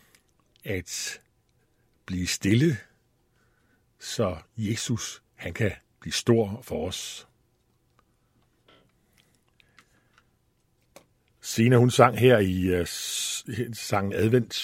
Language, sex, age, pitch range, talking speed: Danish, male, 60-79, 110-125 Hz, 75 wpm